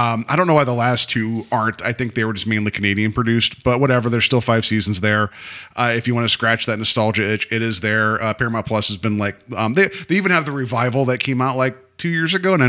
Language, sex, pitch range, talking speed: English, male, 110-145 Hz, 275 wpm